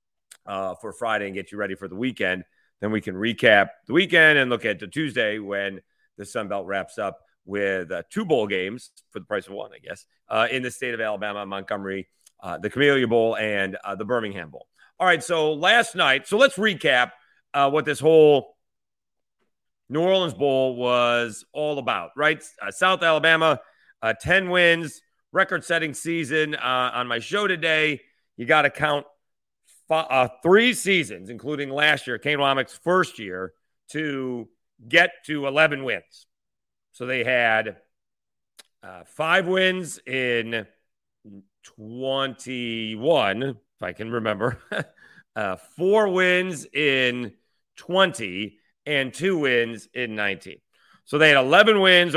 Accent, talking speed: American, 155 wpm